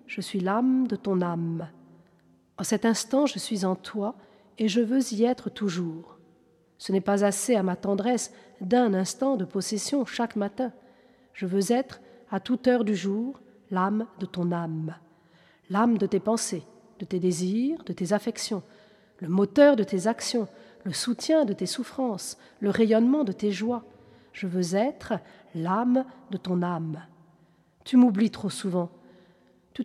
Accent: French